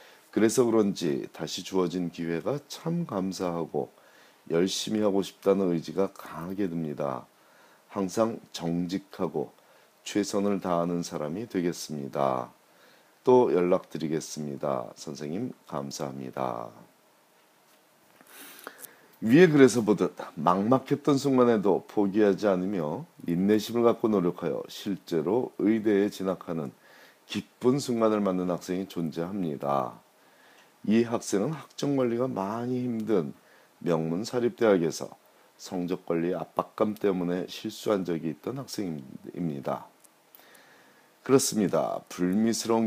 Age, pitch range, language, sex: 40-59, 85-115 Hz, Korean, male